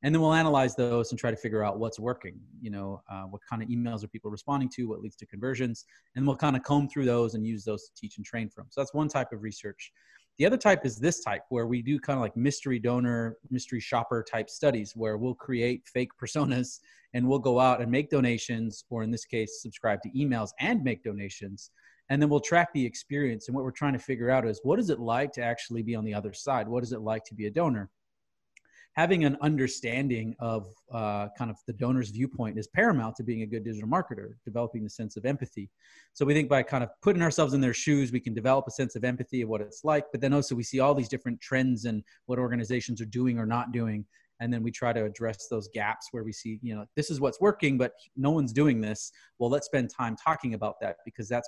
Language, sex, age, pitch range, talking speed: English, male, 30-49, 110-140 Hz, 250 wpm